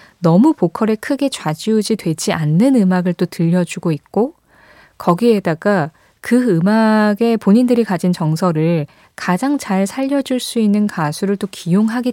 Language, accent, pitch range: Korean, native, 175-235 Hz